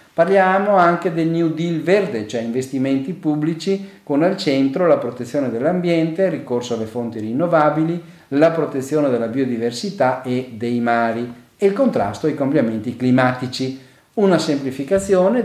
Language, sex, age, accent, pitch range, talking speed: Italian, male, 50-69, native, 120-170 Hz, 135 wpm